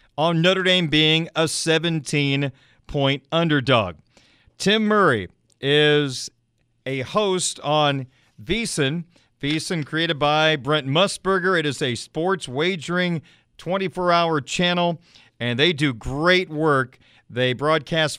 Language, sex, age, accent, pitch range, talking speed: English, male, 40-59, American, 140-170 Hz, 110 wpm